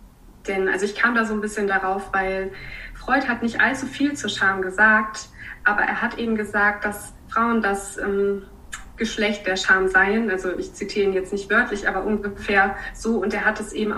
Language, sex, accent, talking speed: German, female, German, 195 wpm